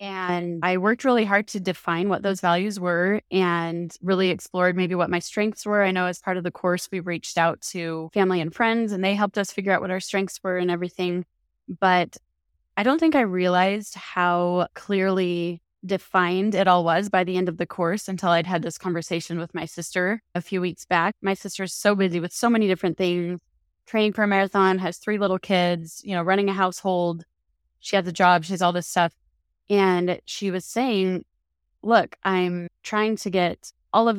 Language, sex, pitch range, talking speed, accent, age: English, female, 175-200 Hz, 205 wpm, American, 20-39